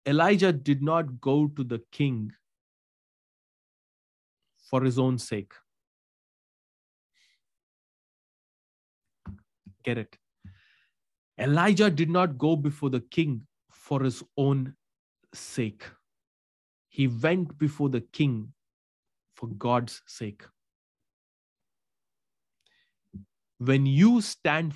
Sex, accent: male, Indian